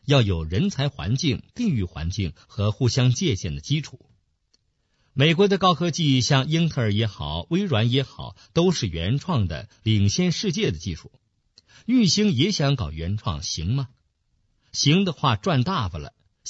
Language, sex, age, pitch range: Chinese, male, 50-69, 100-150 Hz